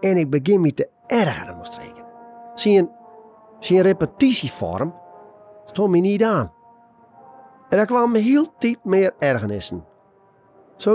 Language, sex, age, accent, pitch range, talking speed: Dutch, male, 40-59, Dutch, 140-230 Hz, 125 wpm